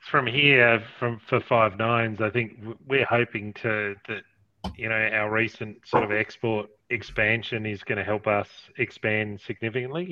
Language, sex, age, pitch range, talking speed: English, male, 30-49, 105-120 Hz, 160 wpm